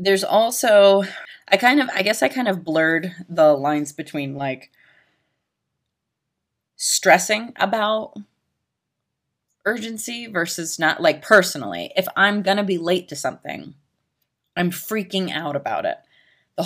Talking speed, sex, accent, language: 130 wpm, female, American, English